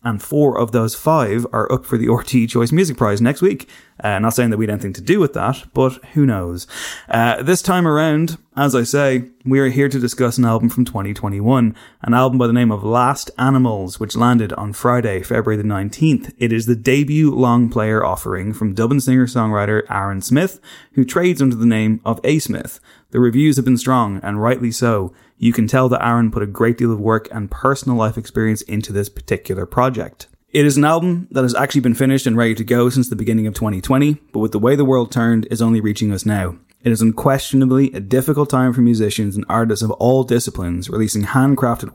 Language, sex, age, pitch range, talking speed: English, male, 20-39, 110-130 Hz, 215 wpm